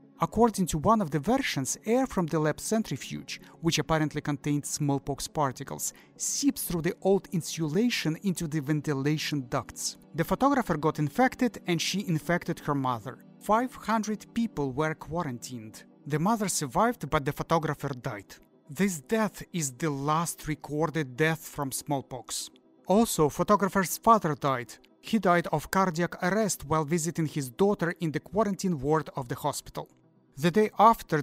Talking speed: 150 wpm